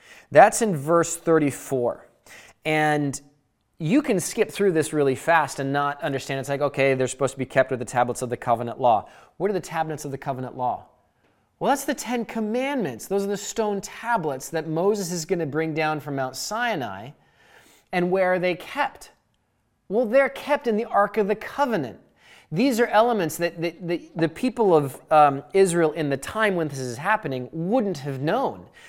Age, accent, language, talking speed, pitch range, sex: 20-39, American, English, 190 wpm, 135-195 Hz, male